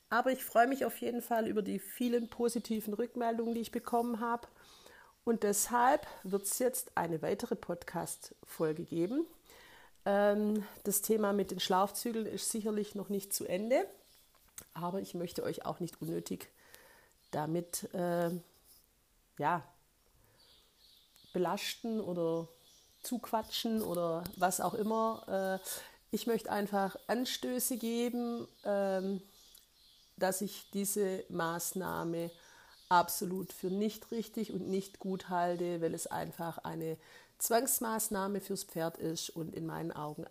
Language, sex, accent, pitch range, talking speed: German, female, German, 175-230 Hz, 125 wpm